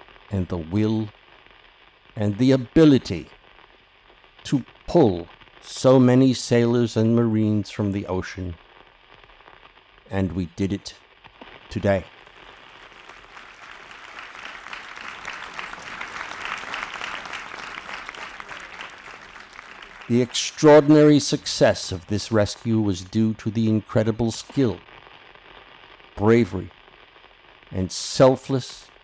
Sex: male